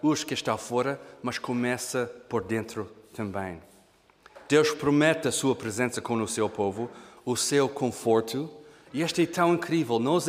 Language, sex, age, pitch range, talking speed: Portuguese, male, 40-59, 125-165 Hz, 150 wpm